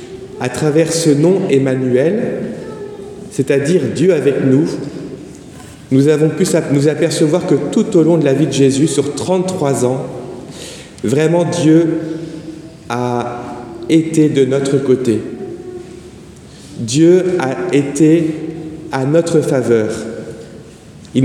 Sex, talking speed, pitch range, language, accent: male, 115 wpm, 135-165 Hz, French, French